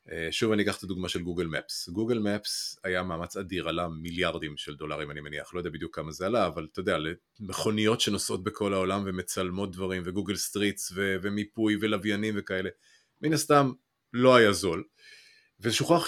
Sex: male